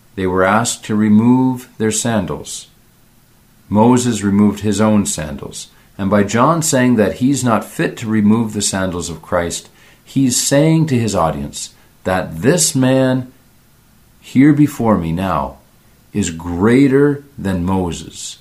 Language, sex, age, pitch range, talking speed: Ukrainian, male, 50-69, 90-120 Hz, 135 wpm